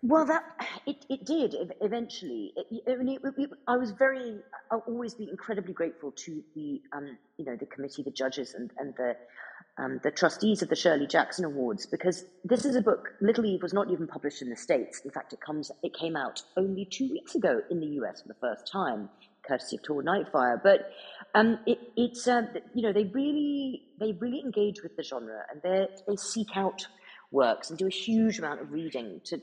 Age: 40-59